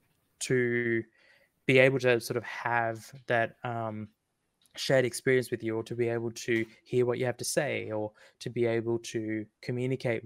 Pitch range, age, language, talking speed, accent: 110-125 Hz, 20-39, English, 175 wpm, Australian